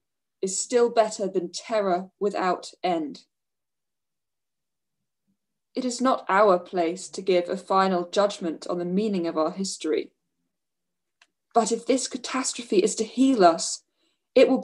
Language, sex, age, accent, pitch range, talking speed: English, female, 20-39, British, 185-240 Hz, 135 wpm